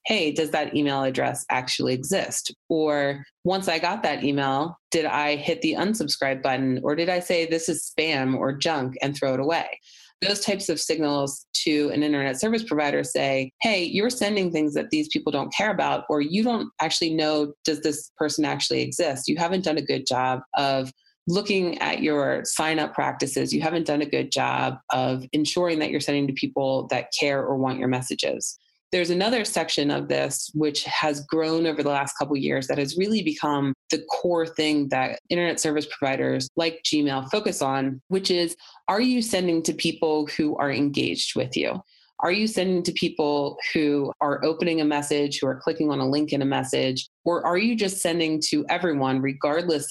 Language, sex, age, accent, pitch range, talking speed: English, female, 30-49, American, 140-170 Hz, 195 wpm